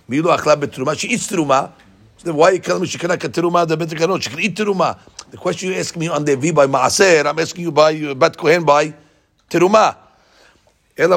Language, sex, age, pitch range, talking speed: English, male, 60-79, 125-160 Hz, 225 wpm